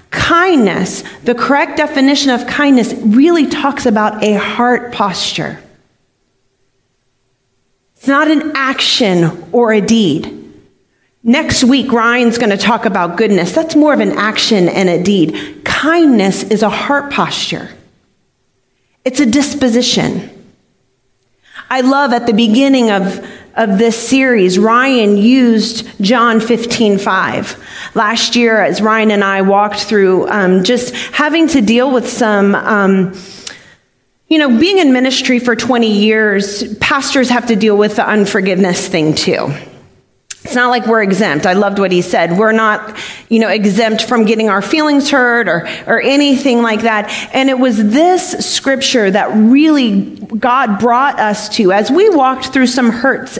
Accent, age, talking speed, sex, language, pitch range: American, 40-59, 150 wpm, female, English, 210-265 Hz